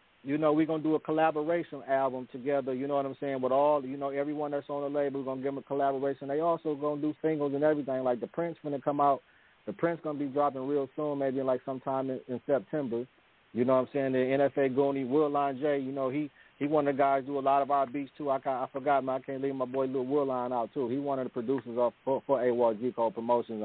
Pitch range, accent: 125-145 Hz, American